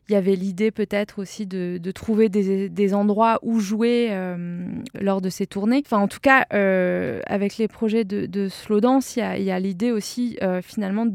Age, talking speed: 20-39, 205 wpm